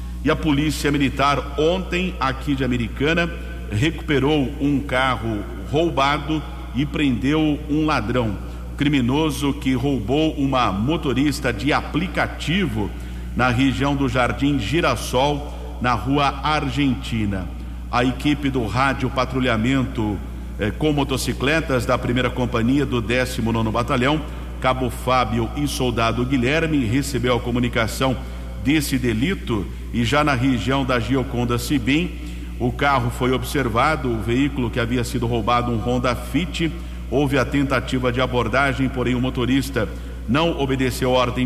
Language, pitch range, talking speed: English, 120-140 Hz, 125 wpm